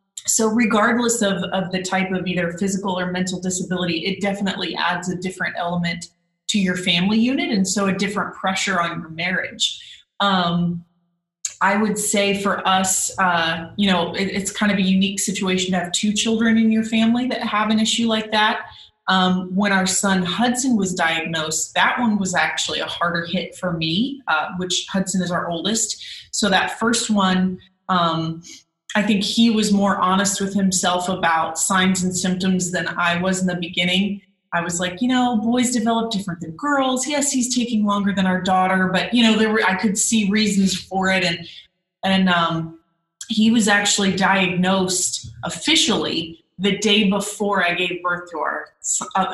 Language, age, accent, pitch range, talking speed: English, 30-49, American, 175-210 Hz, 180 wpm